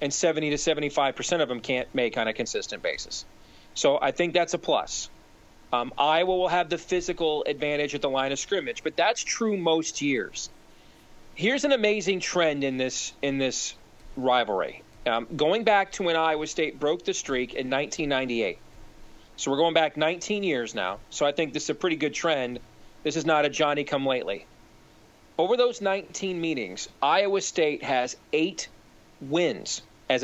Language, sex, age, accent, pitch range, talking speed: English, male, 40-59, American, 140-175 Hz, 170 wpm